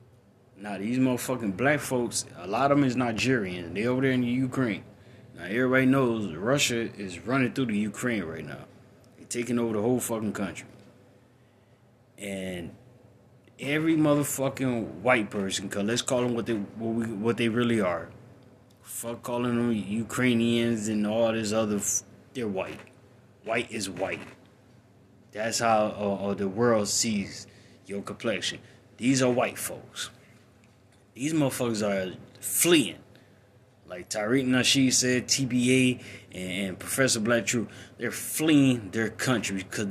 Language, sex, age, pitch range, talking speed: English, male, 20-39, 105-125 Hz, 145 wpm